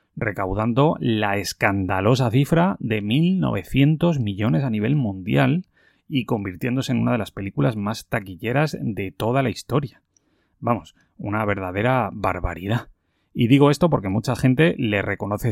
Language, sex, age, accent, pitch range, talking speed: Spanish, male, 30-49, Spanish, 100-130 Hz, 135 wpm